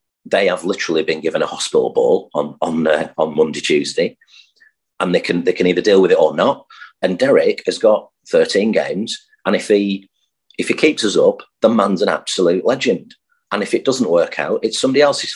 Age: 40-59